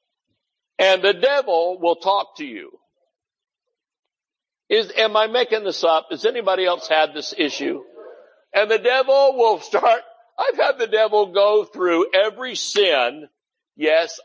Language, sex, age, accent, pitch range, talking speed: English, male, 60-79, American, 165-275 Hz, 140 wpm